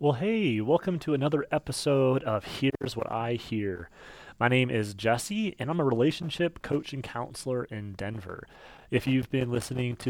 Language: English